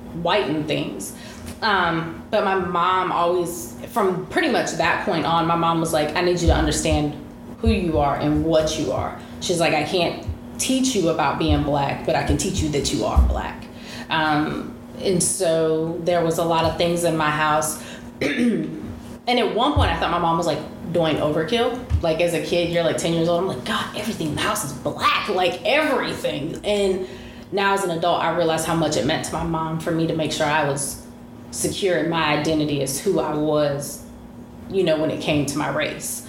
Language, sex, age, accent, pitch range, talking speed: English, female, 20-39, American, 155-175 Hz, 210 wpm